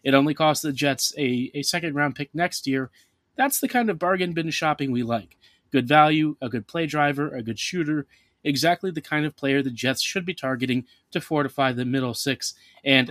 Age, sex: 30-49, male